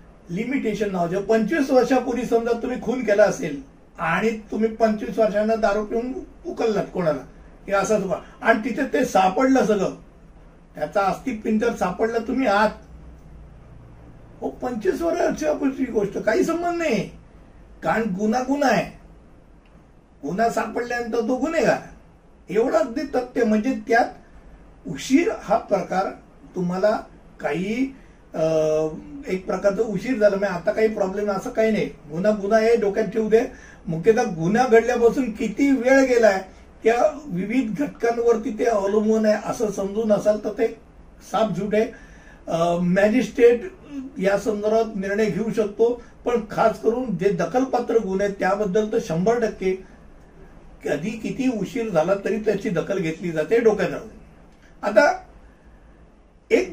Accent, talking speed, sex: native, 95 wpm, male